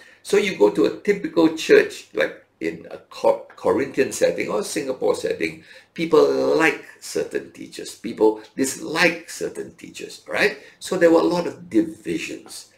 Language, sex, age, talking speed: English, male, 60-79, 145 wpm